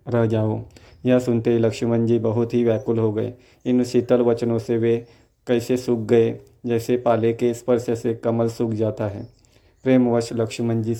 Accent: native